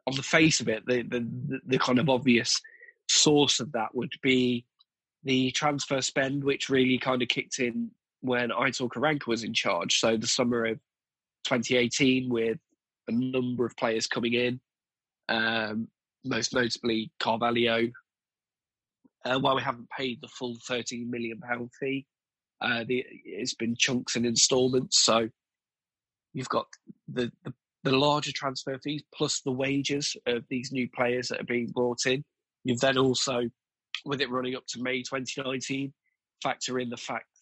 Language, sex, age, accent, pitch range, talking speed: English, male, 20-39, British, 120-135 Hz, 160 wpm